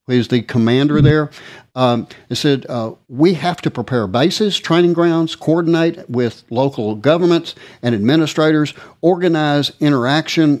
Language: English